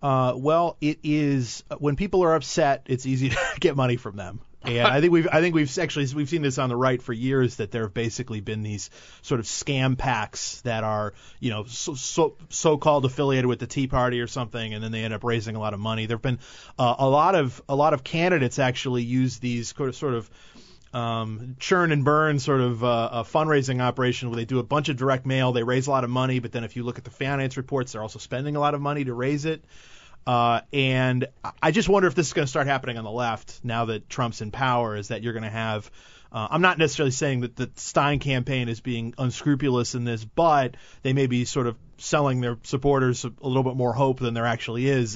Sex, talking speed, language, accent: male, 245 wpm, English, American